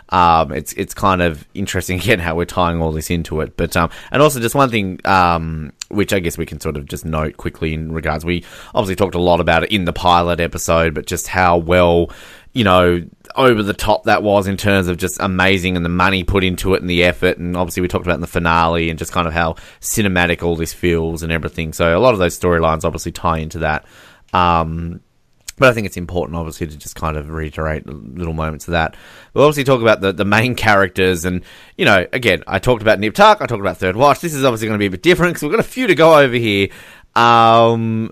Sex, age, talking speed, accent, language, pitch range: male, 20-39, 245 wpm, Australian, English, 85-115 Hz